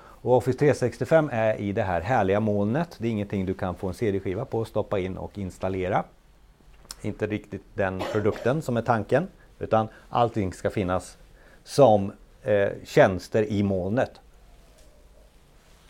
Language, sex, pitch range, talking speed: Swedish, male, 105-145 Hz, 145 wpm